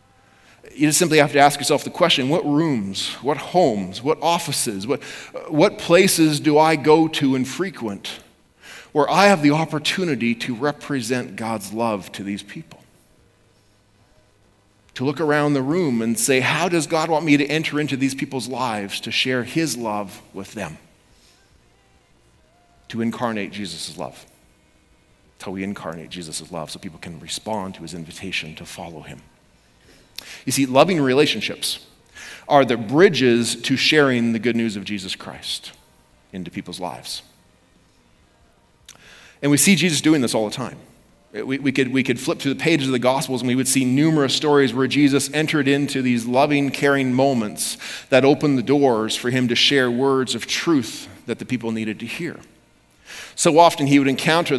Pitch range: 110-145 Hz